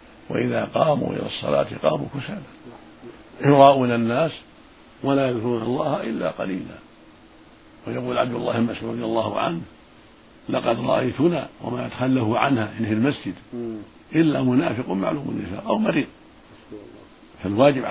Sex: male